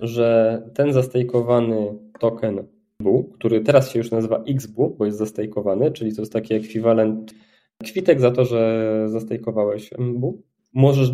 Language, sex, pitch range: Polish, male, 110-130 Hz